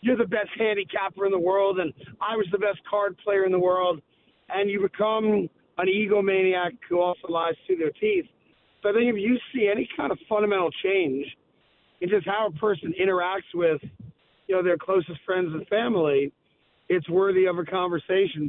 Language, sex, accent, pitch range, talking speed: English, male, American, 160-190 Hz, 190 wpm